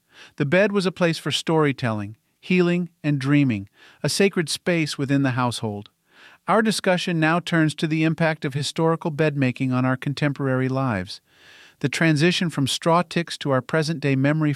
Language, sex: English, male